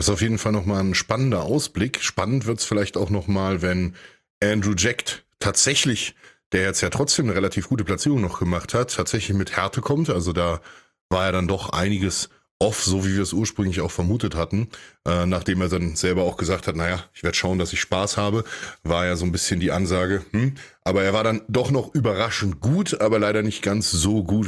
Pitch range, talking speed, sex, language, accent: 95-120 Hz, 215 wpm, male, English, German